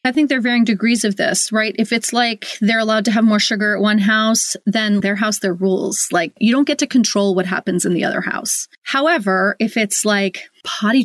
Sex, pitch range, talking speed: female, 200-255 Hz, 235 wpm